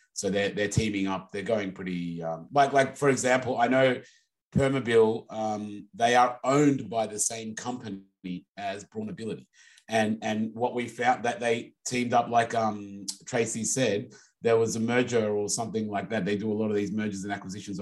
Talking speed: 190 wpm